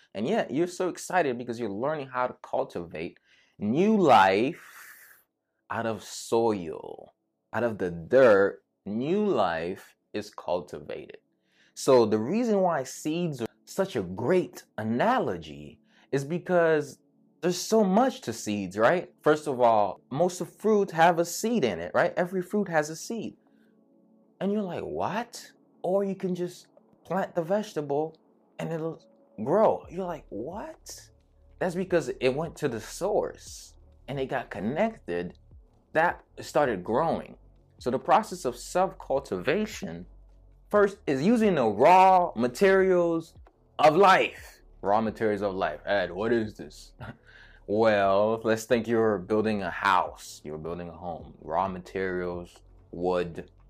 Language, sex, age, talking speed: English, male, 20-39, 140 wpm